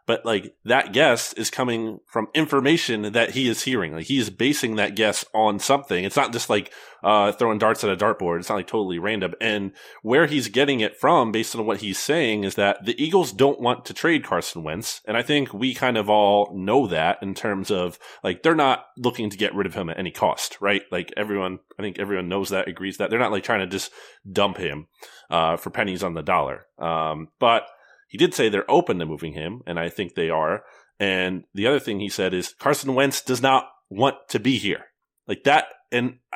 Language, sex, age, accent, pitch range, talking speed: English, male, 30-49, American, 100-130 Hz, 225 wpm